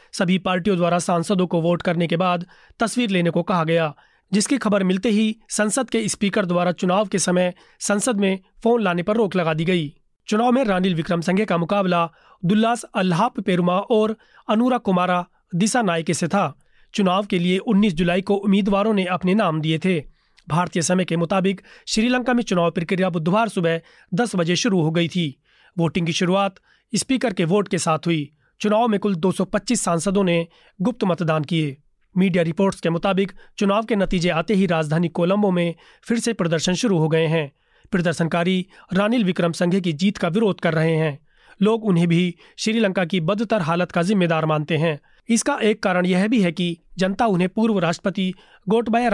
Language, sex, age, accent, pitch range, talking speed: Hindi, male, 30-49, native, 170-210 Hz, 185 wpm